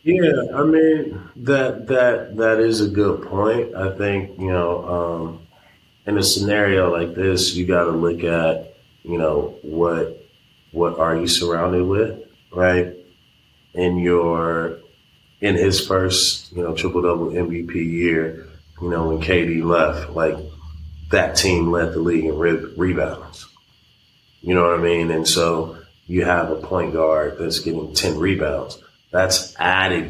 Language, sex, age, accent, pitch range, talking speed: English, male, 30-49, American, 85-95 Hz, 150 wpm